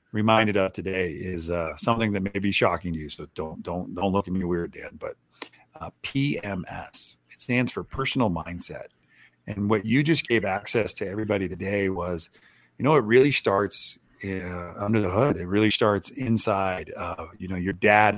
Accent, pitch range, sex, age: American, 90-105 Hz, male, 40-59